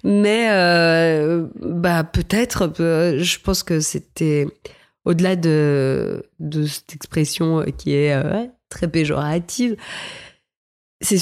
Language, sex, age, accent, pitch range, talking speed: French, female, 30-49, French, 155-190 Hz, 110 wpm